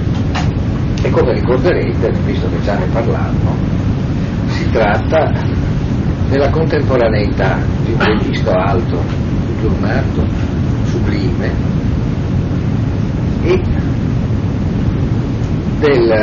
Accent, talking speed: native, 80 wpm